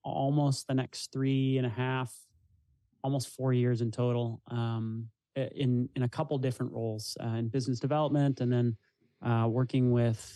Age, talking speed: 30-49, 160 wpm